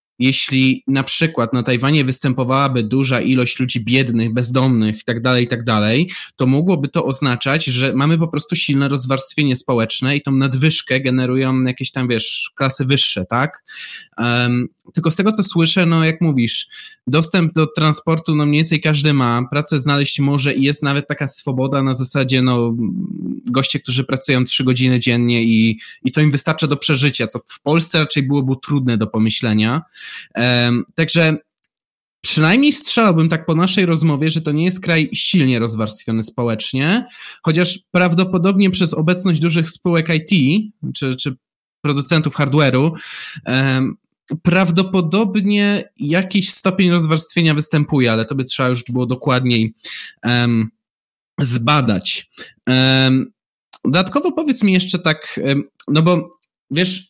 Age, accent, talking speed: 20-39, native, 140 wpm